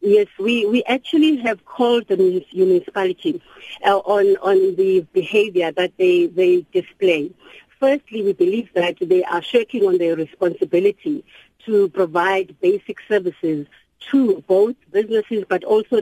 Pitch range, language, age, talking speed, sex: 185-265 Hz, English, 50-69, 135 wpm, female